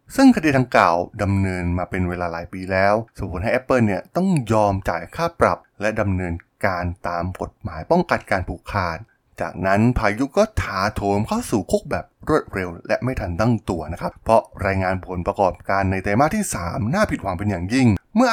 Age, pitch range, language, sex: 20-39, 95-130 Hz, Thai, male